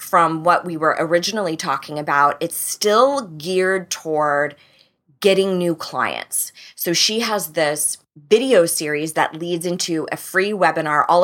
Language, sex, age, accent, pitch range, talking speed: English, female, 20-39, American, 155-185 Hz, 145 wpm